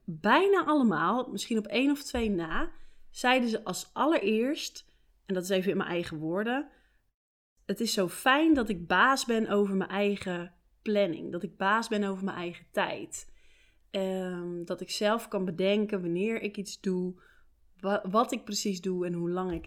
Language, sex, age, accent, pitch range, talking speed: Dutch, female, 20-39, Dutch, 180-215 Hz, 175 wpm